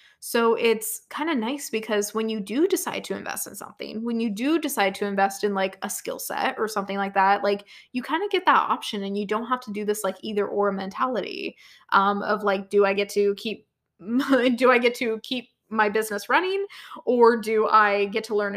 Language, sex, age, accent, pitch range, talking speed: English, female, 20-39, American, 205-270 Hz, 225 wpm